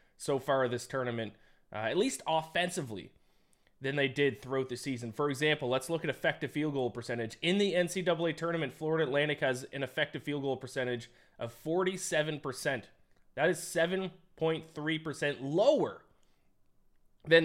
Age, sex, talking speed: 20-39, male, 150 wpm